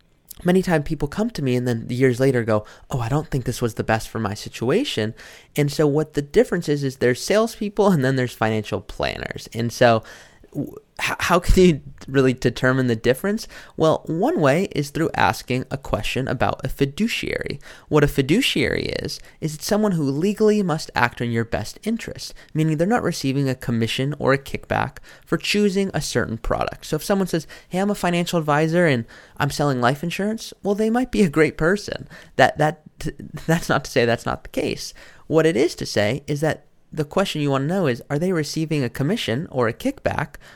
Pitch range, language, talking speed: 125-175 Hz, English, 205 wpm